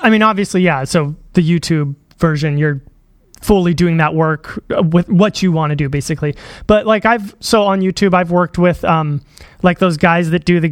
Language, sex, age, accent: English, male, 30-49, American